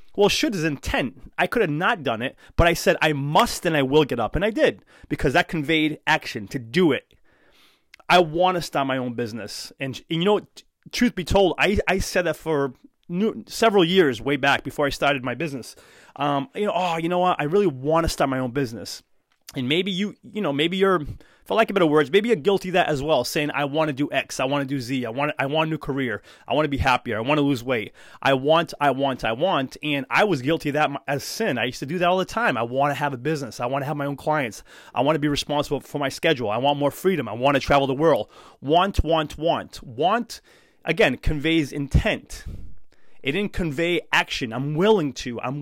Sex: male